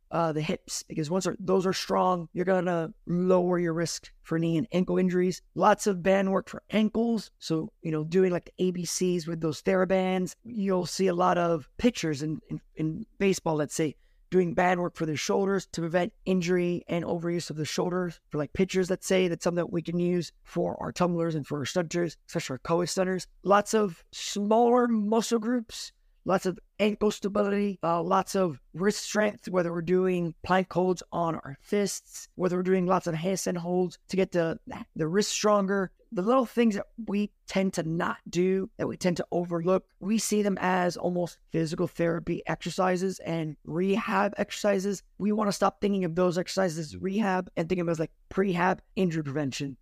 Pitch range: 170-195 Hz